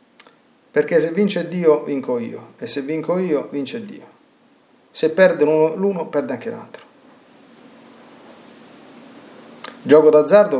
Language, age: Italian, 40-59